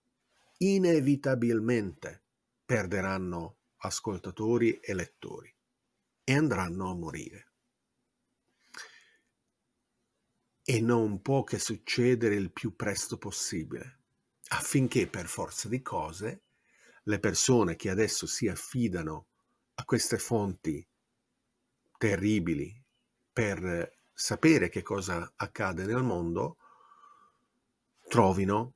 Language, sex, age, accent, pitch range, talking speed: Italian, male, 50-69, native, 95-120 Hz, 85 wpm